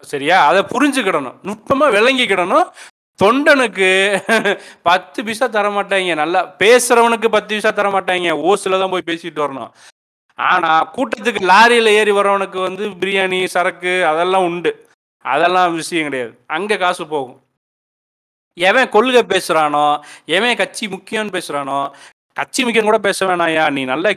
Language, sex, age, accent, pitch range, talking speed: Tamil, male, 30-49, native, 160-210 Hz, 50 wpm